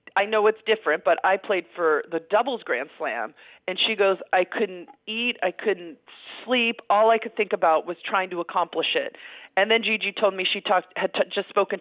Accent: American